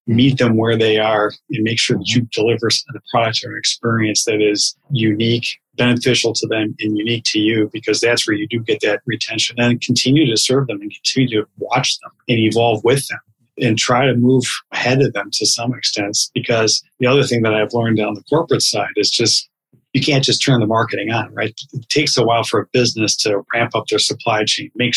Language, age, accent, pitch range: English, 40-59, American, 110-130 Hz